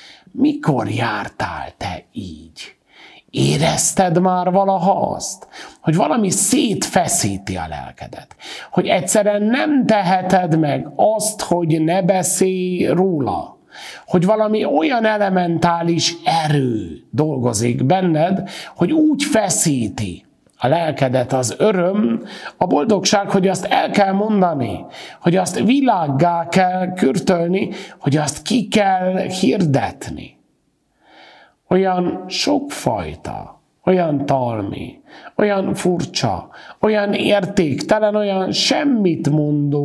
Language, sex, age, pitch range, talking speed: Hungarian, male, 50-69, 135-200 Hz, 95 wpm